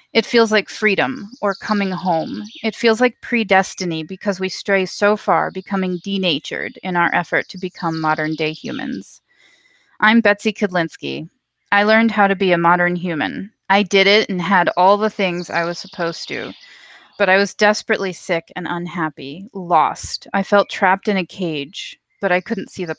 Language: English